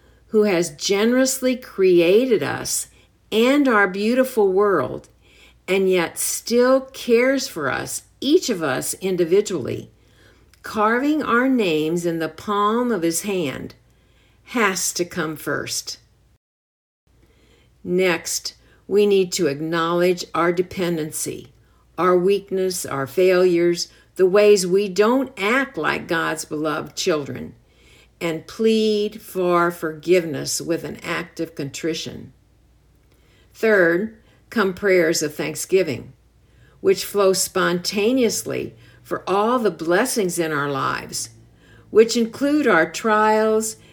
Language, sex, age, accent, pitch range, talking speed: English, female, 50-69, American, 165-220 Hz, 110 wpm